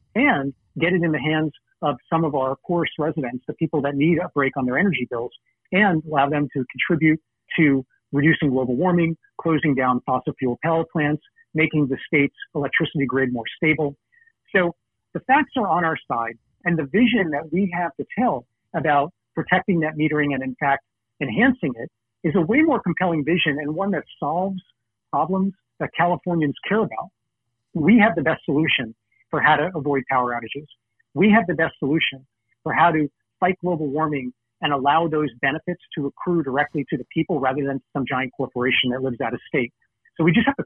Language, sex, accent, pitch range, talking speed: English, male, American, 135-175 Hz, 190 wpm